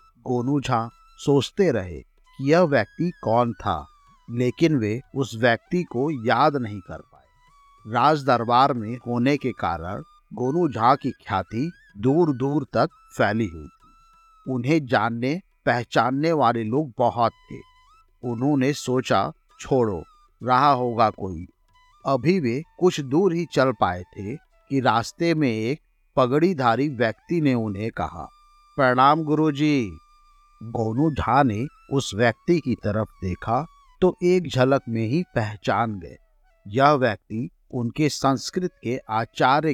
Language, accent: Hindi, native